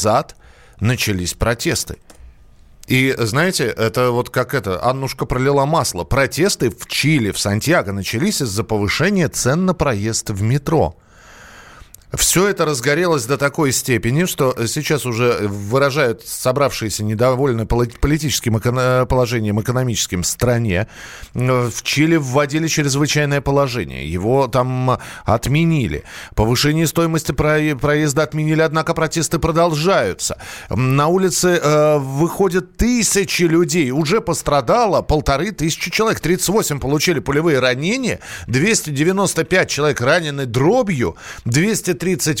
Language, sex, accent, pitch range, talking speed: Russian, male, native, 125-170 Hz, 105 wpm